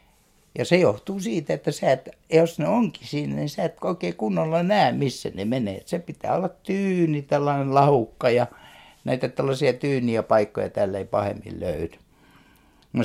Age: 60-79